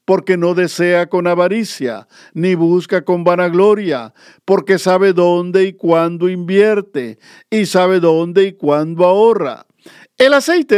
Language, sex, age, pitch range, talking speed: Spanish, male, 50-69, 160-200 Hz, 130 wpm